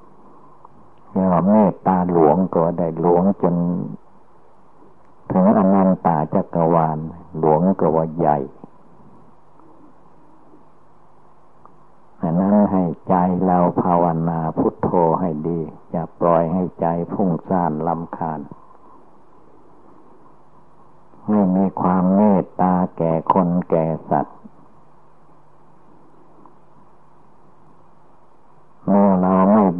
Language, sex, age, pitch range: Thai, male, 60-79, 80-95 Hz